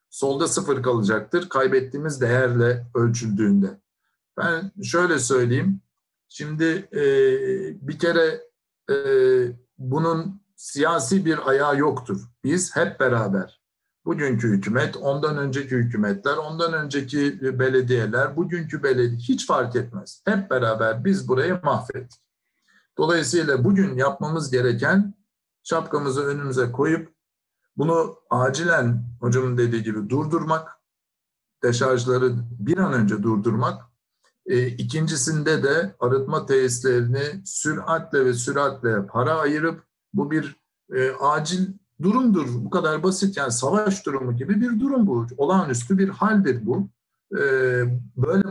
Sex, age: male, 60-79